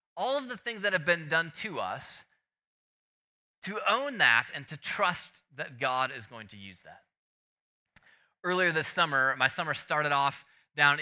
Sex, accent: male, American